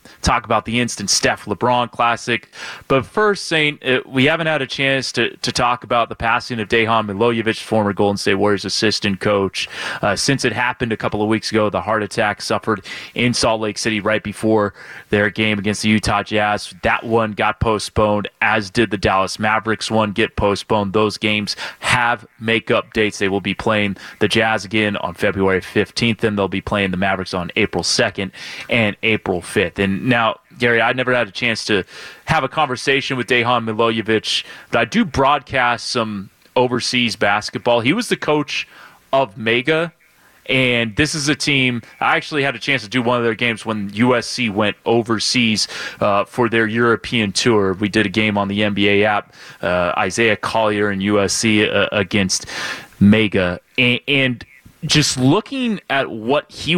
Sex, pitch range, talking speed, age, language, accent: male, 105-125 Hz, 180 wpm, 20-39, English, American